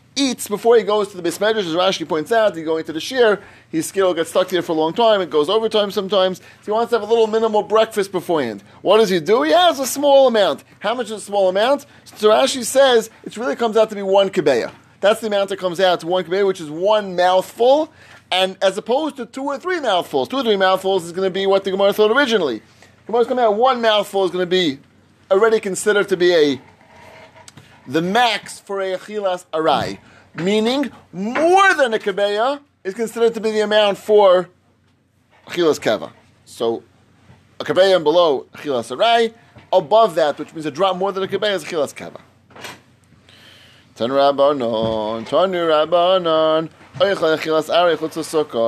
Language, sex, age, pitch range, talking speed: English, male, 30-49, 160-220 Hz, 200 wpm